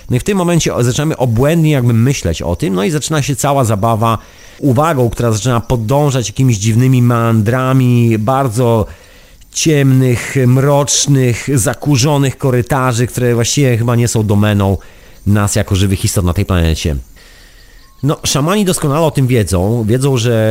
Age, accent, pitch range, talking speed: 30-49, native, 100-130 Hz, 145 wpm